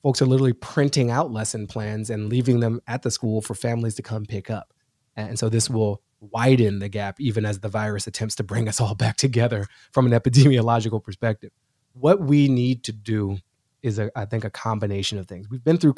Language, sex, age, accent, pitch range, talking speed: English, male, 20-39, American, 115-140 Hz, 210 wpm